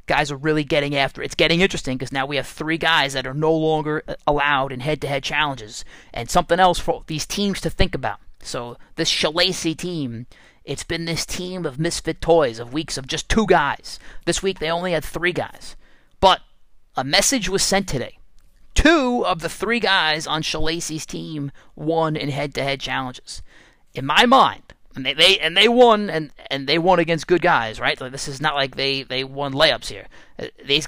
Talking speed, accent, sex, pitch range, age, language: 195 wpm, American, male, 145-180 Hz, 30-49, English